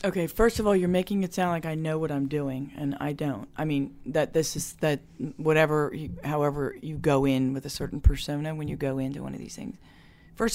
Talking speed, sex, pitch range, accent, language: 235 wpm, female, 140-180 Hz, American, English